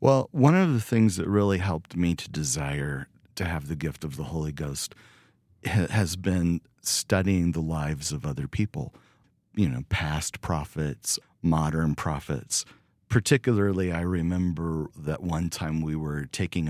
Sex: male